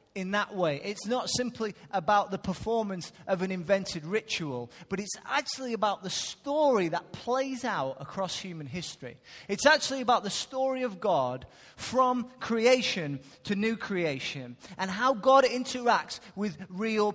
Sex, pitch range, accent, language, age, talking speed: male, 170-235 Hz, British, English, 30-49, 150 wpm